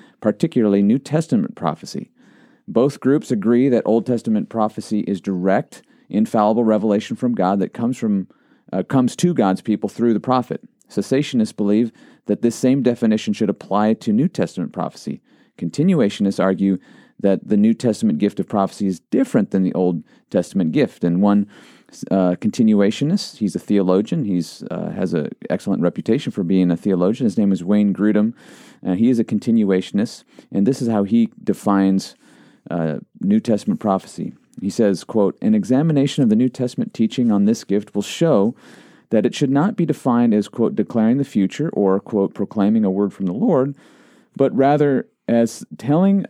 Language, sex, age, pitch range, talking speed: English, male, 40-59, 100-140 Hz, 170 wpm